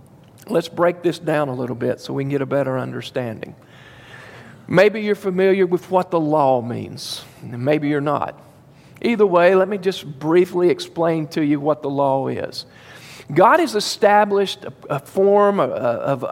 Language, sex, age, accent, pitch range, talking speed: English, male, 50-69, American, 165-210 Hz, 165 wpm